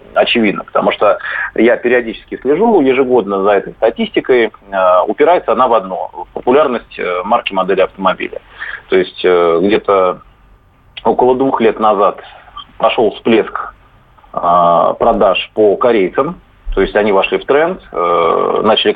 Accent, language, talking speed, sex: native, Russian, 120 wpm, male